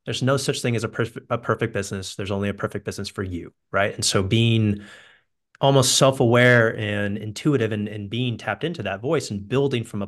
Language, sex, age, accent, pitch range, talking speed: English, male, 30-49, American, 105-125 Hz, 215 wpm